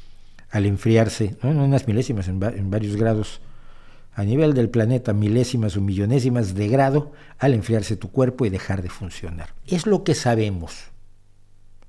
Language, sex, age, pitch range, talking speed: Spanish, male, 50-69, 100-130 Hz, 145 wpm